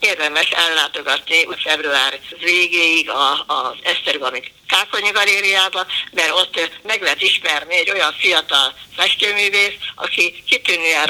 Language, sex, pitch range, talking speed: Hungarian, female, 170-230 Hz, 110 wpm